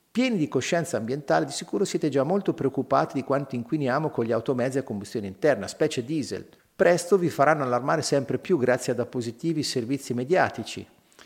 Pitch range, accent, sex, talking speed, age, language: 135-185 Hz, native, male, 170 wpm, 50-69, Italian